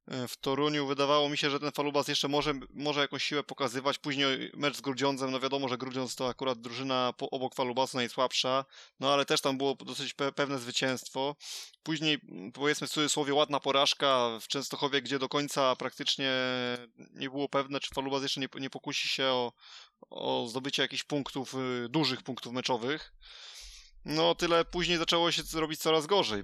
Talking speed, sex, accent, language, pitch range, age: 170 wpm, male, native, Polish, 125-145 Hz, 20-39